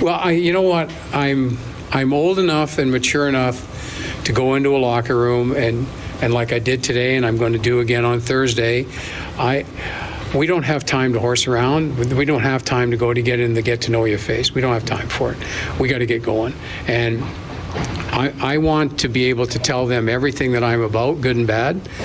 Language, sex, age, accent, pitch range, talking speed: English, male, 50-69, American, 115-130 Hz, 225 wpm